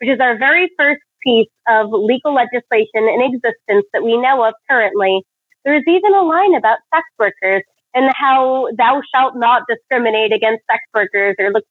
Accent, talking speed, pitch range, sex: American, 180 wpm, 230-300 Hz, female